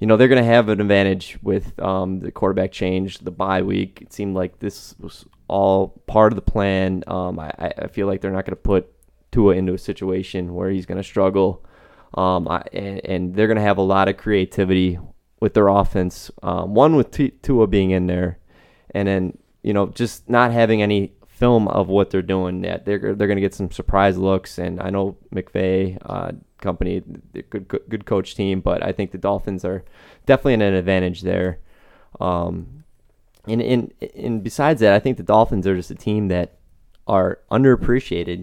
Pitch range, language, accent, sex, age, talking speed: 95-105 Hz, English, American, male, 20-39, 205 wpm